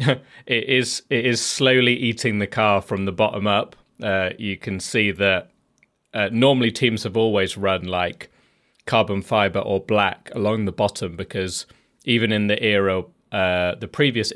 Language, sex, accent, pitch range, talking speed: English, male, British, 95-115 Hz, 165 wpm